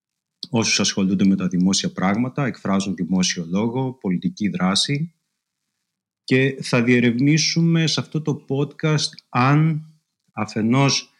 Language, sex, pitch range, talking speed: English, male, 95-145 Hz, 105 wpm